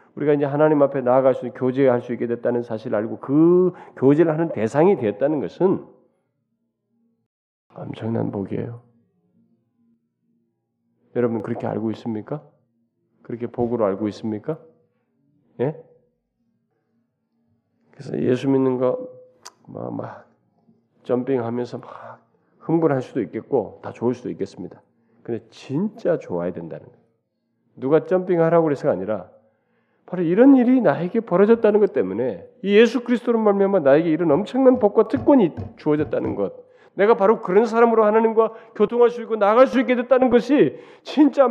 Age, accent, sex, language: 40-59, native, male, Korean